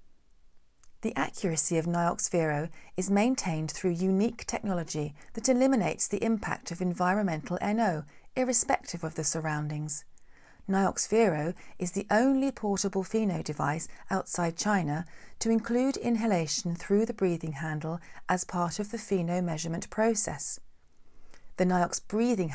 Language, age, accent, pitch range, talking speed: English, 40-59, British, 165-220 Hz, 120 wpm